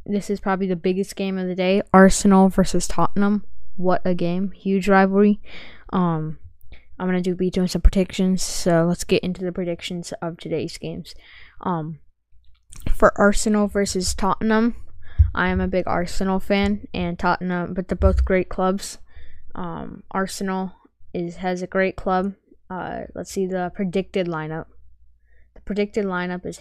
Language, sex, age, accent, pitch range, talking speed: English, female, 10-29, American, 170-195 Hz, 155 wpm